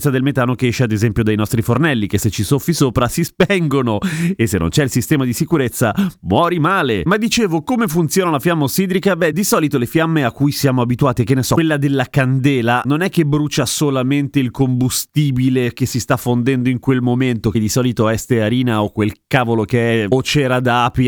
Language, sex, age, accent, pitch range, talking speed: Italian, male, 30-49, native, 120-155 Hz, 215 wpm